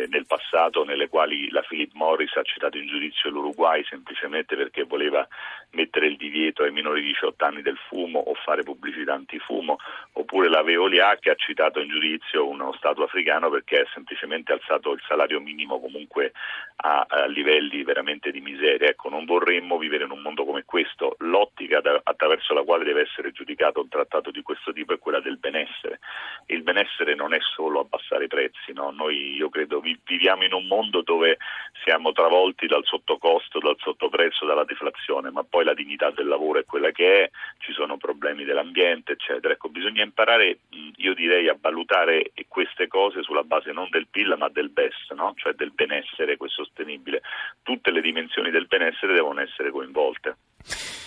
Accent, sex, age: native, male, 40-59